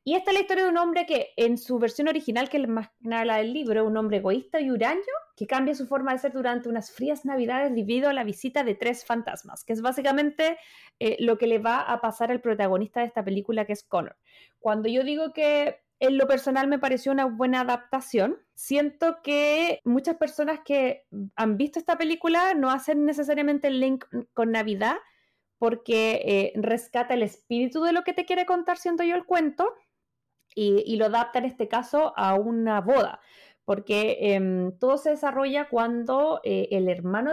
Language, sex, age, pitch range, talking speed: Spanish, female, 20-39, 215-290 Hz, 200 wpm